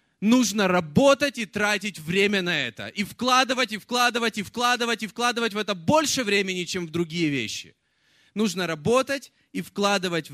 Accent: native